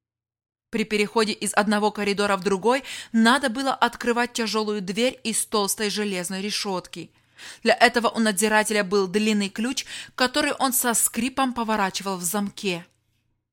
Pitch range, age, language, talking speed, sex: 185-235 Hz, 20-39, Russian, 135 wpm, female